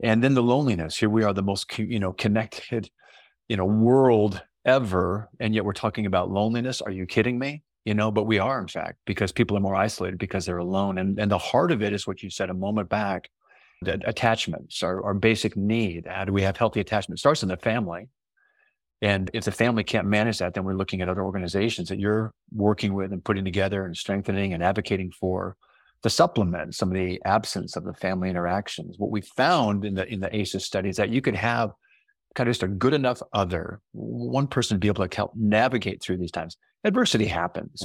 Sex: male